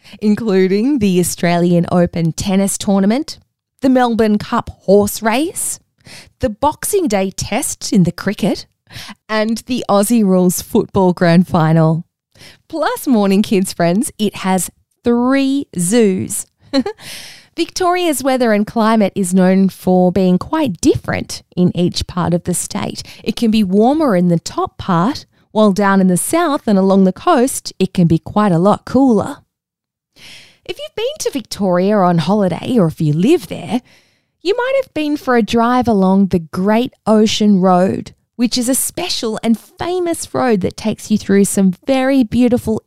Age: 20-39